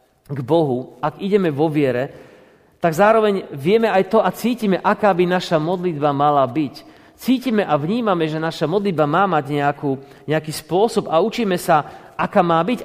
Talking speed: 165 wpm